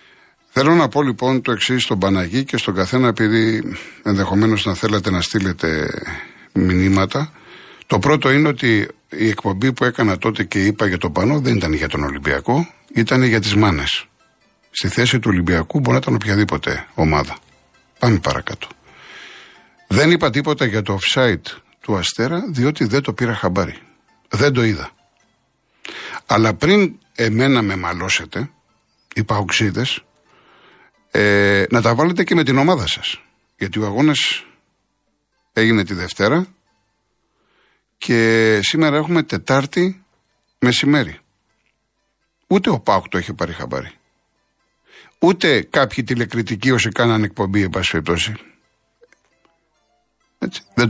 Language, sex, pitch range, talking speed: Greek, male, 100-135 Hz, 130 wpm